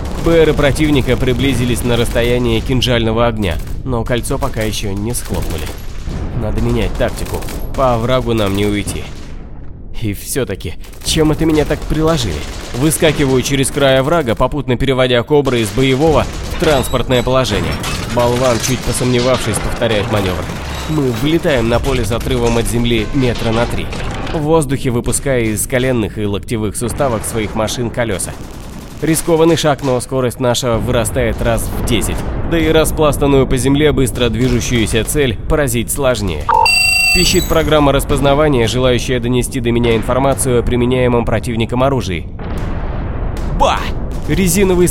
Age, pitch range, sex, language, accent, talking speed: 30-49, 105-140 Hz, male, Russian, native, 135 wpm